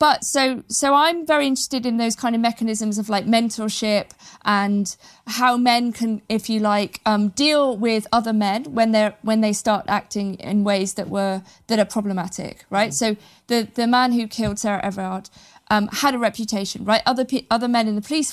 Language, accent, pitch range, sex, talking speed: English, British, 200-235 Hz, female, 195 wpm